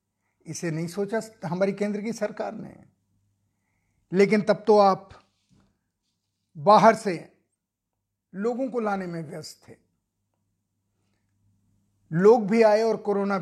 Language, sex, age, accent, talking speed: Hindi, male, 50-69, native, 110 wpm